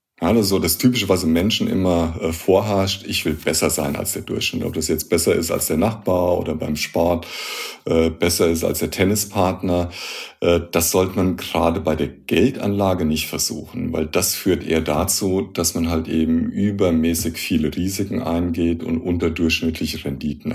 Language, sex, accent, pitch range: German, male, German, 85-105 Hz